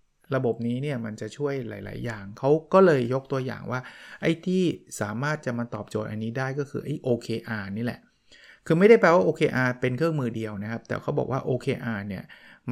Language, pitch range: Thai, 115-145 Hz